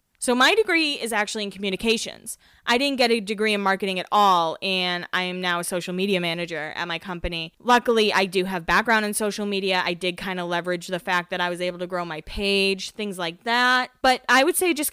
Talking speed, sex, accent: 235 wpm, female, American